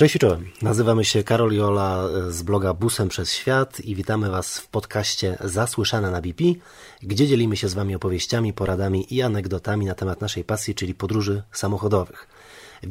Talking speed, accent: 165 wpm, native